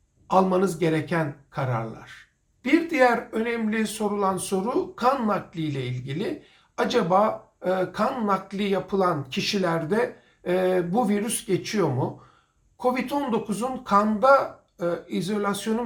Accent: native